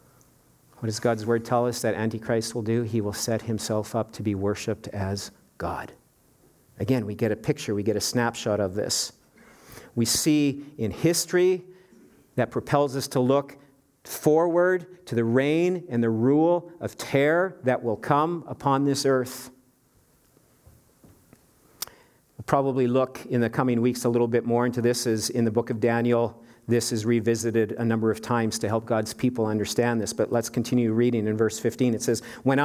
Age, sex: 50-69, male